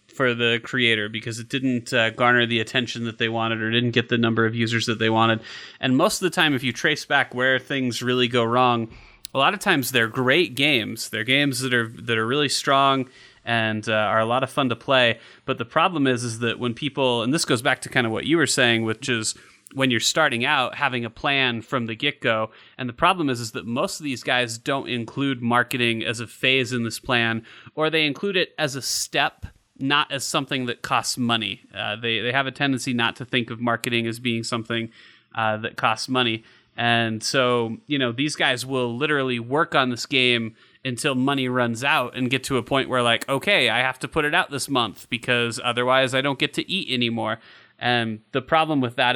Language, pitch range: English, 115-135 Hz